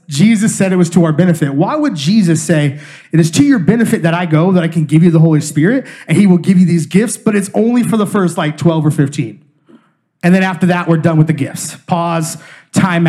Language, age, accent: English, 30-49, American